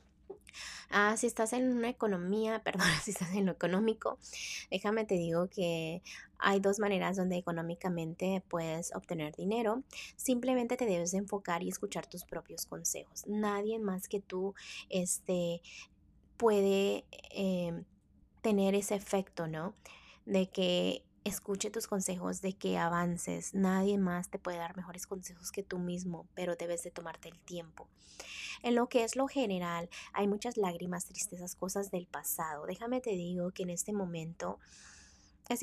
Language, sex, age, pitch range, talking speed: Spanish, female, 20-39, 175-210 Hz, 150 wpm